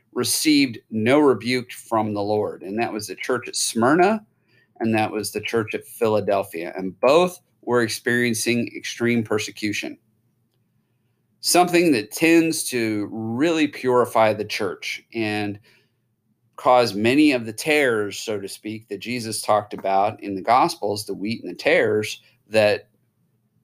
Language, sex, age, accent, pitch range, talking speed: English, male, 40-59, American, 105-120 Hz, 140 wpm